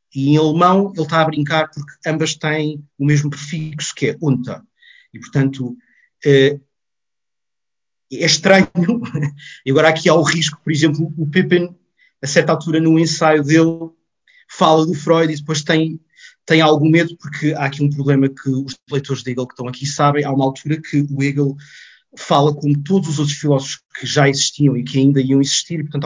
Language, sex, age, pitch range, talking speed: Portuguese, male, 30-49, 140-165 Hz, 185 wpm